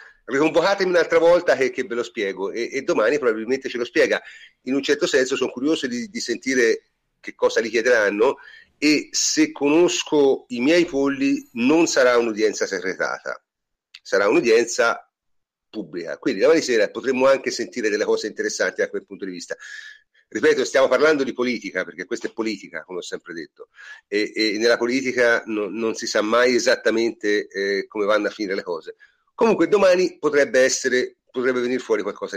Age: 40-59